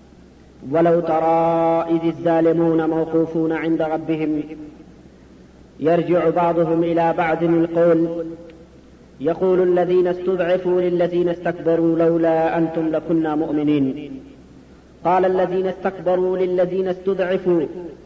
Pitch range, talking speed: 160-185 Hz, 85 wpm